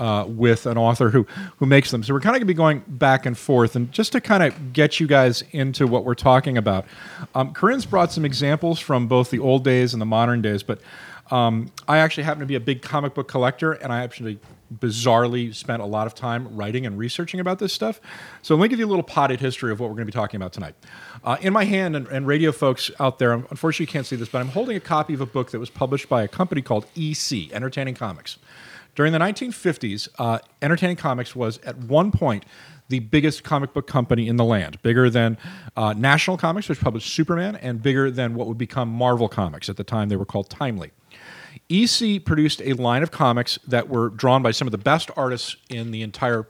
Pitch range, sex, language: 115-150 Hz, male, English